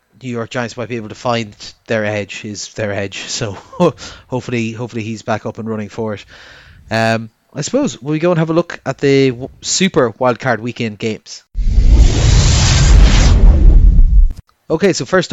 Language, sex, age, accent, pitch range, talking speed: English, male, 30-49, Irish, 115-140 Hz, 165 wpm